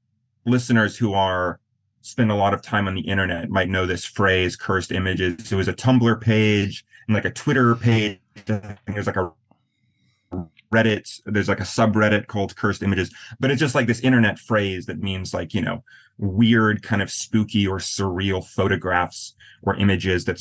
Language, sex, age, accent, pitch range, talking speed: English, male, 30-49, American, 95-115 Hz, 180 wpm